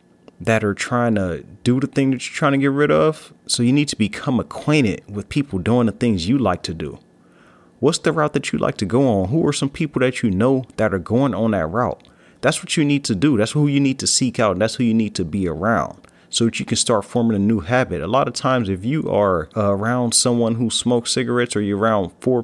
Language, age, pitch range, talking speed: English, 30-49, 105-145 Hz, 255 wpm